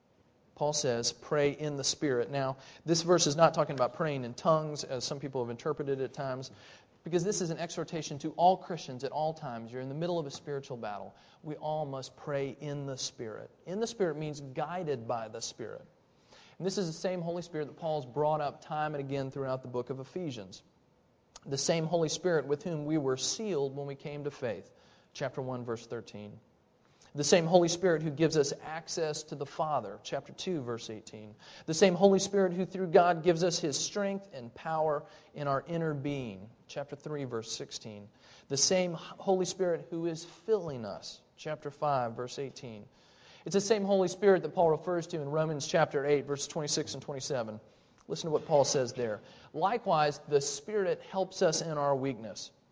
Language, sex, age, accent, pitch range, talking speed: English, male, 40-59, American, 135-170 Hz, 200 wpm